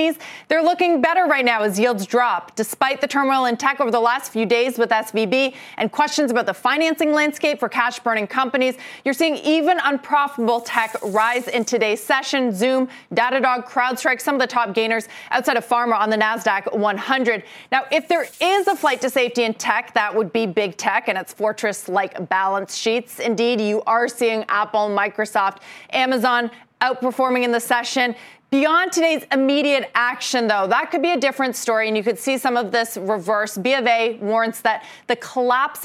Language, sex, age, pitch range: English, female, 30-49, 215-270 Hz